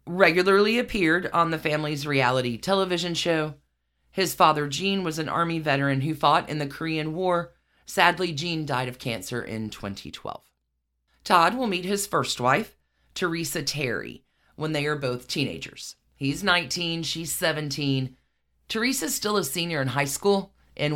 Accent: American